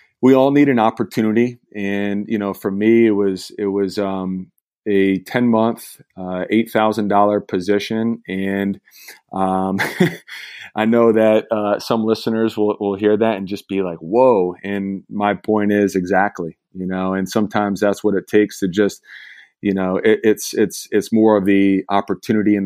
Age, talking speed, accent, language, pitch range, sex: 30-49, 165 wpm, American, English, 95-110 Hz, male